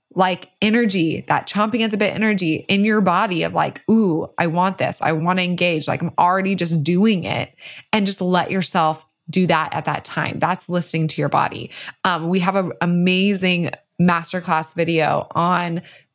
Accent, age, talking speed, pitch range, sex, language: American, 20-39, 180 wpm, 165-195 Hz, female, English